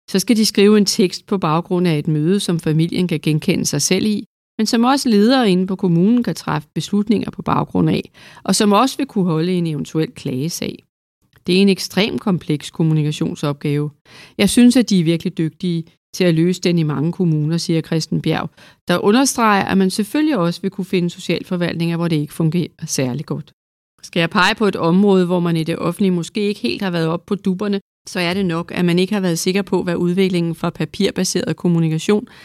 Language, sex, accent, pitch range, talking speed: Danish, female, native, 165-200 Hz, 210 wpm